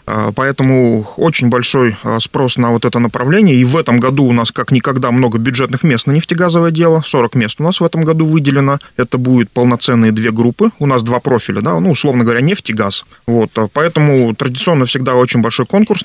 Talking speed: 190 wpm